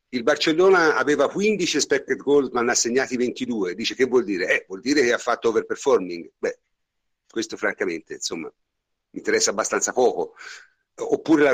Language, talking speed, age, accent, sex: Italian, 160 wpm, 50-69, native, male